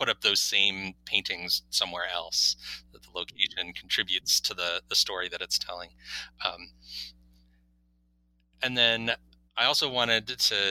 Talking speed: 135 wpm